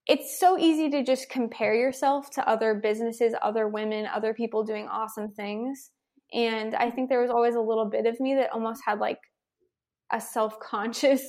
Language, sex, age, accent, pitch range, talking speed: English, female, 20-39, American, 215-255 Hz, 180 wpm